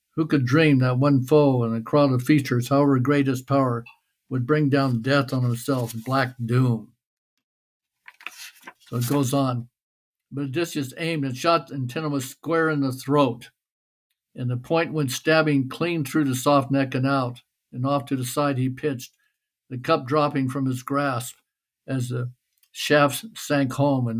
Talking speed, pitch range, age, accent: 170 wpm, 125-145 Hz, 60-79, American